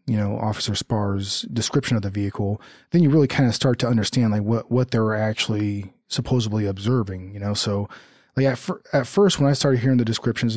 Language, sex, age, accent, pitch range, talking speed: English, male, 20-39, American, 105-125 Hz, 215 wpm